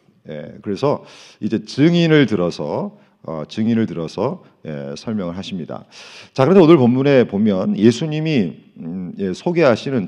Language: Korean